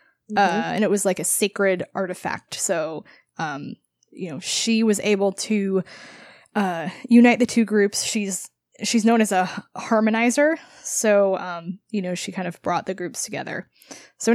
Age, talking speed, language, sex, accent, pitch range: 20-39, 165 wpm, English, female, American, 195-245 Hz